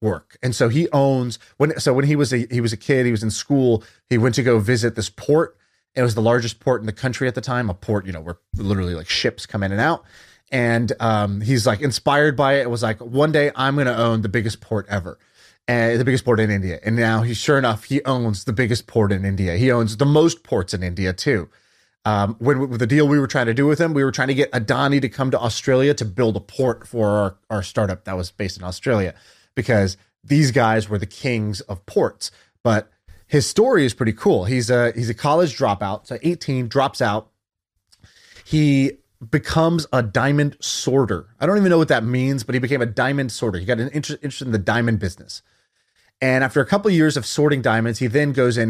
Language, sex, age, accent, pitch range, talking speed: English, male, 30-49, American, 105-135 Hz, 240 wpm